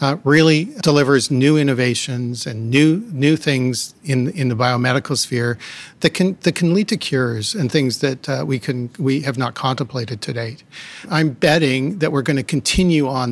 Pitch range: 130-155 Hz